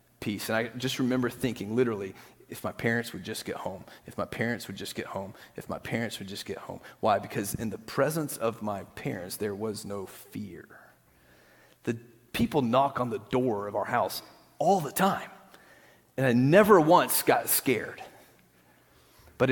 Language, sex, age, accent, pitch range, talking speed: English, male, 30-49, American, 105-130 Hz, 180 wpm